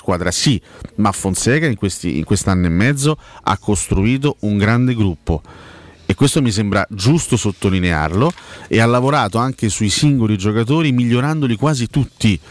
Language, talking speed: Italian, 150 wpm